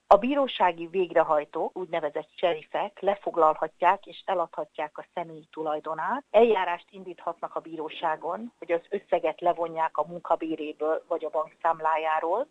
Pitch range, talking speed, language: 155-195 Hz, 120 wpm, Hungarian